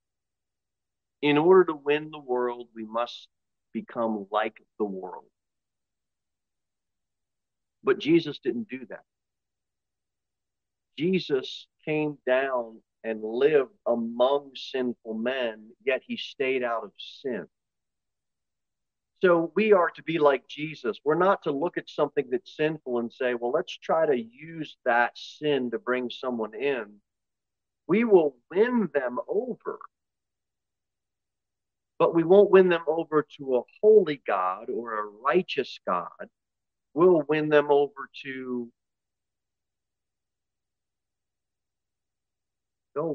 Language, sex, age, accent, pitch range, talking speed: English, male, 40-59, American, 95-150 Hz, 115 wpm